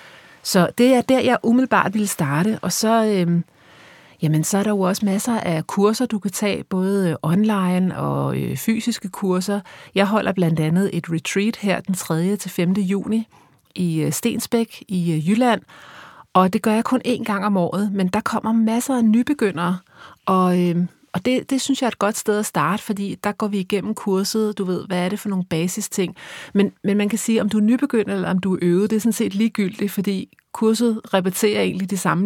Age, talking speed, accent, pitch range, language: 30-49, 205 wpm, native, 175-215 Hz, Danish